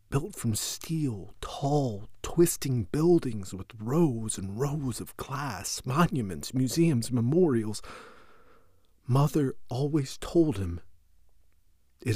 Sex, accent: male, American